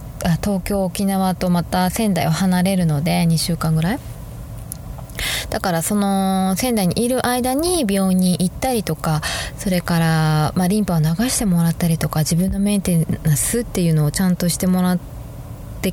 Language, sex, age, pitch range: Japanese, female, 20-39, 160-230 Hz